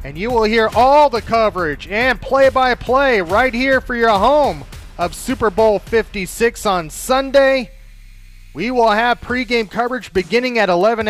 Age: 30-49